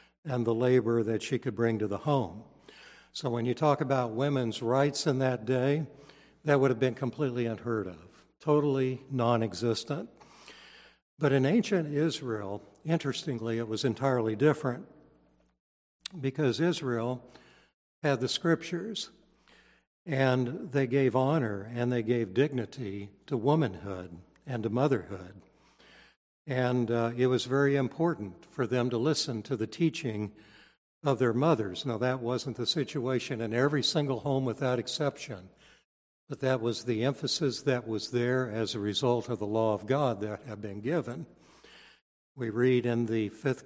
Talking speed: 150 wpm